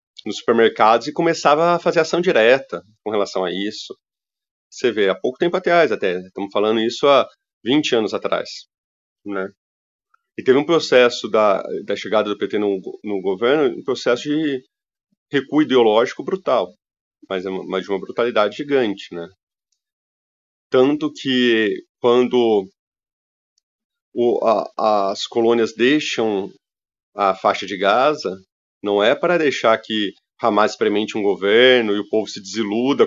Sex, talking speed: male, 140 wpm